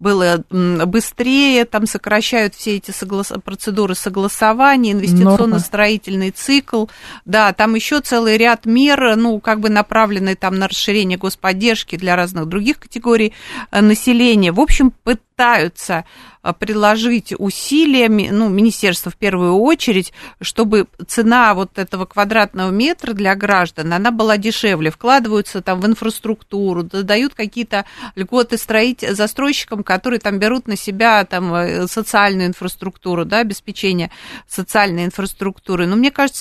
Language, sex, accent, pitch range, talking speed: Russian, female, native, 190-235 Hz, 120 wpm